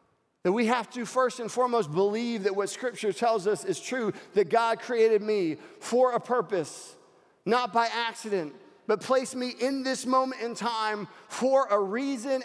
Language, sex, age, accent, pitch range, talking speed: English, male, 40-59, American, 215-270 Hz, 175 wpm